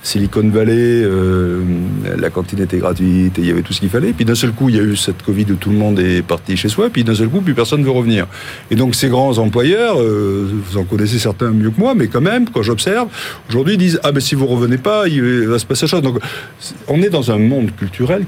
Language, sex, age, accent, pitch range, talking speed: French, male, 50-69, French, 100-135 Hz, 270 wpm